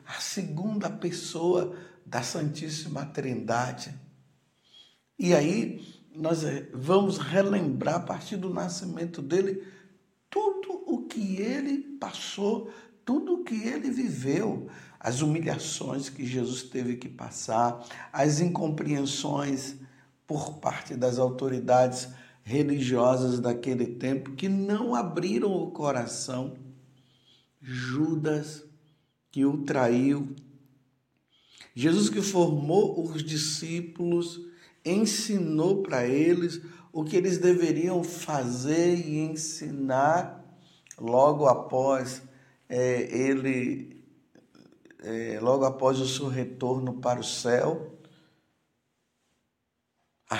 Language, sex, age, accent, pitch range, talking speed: Portuguese, male, 60-79, Brazilian, 130-175 Hz, 95 wpm